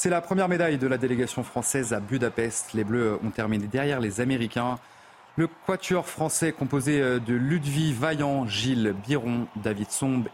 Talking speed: 165 wpm